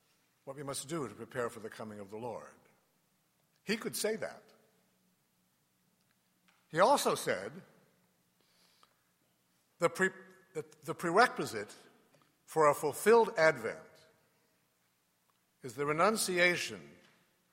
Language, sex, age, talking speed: English, male, 60-79, 100 wpm